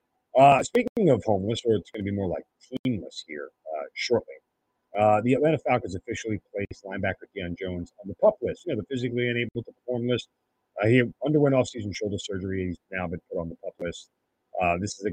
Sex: male